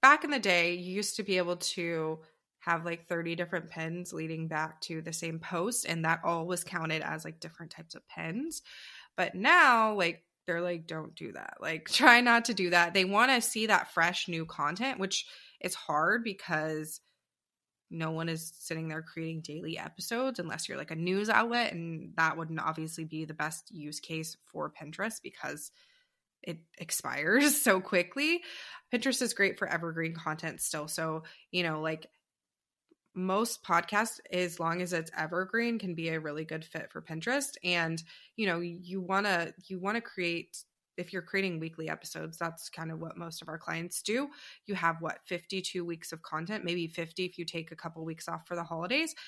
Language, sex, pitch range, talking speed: English, female, 165-205 Hz, 190 wpm